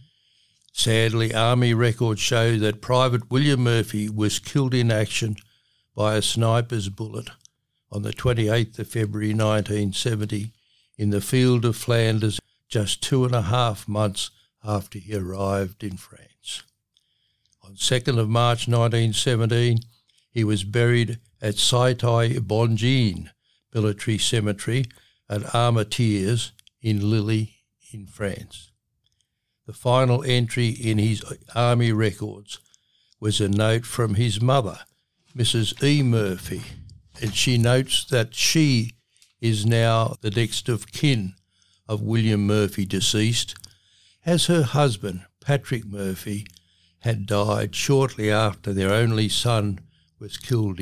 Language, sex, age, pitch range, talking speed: English, male, 60-79, 105-120 Hz, 120 wpm